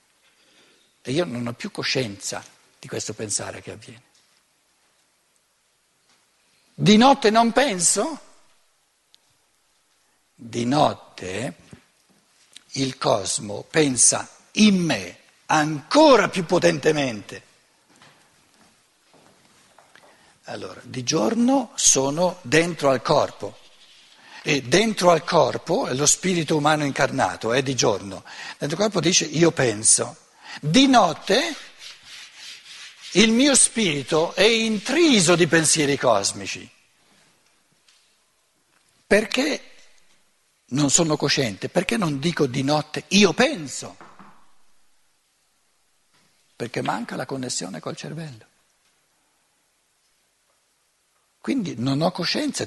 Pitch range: 135-200 Hz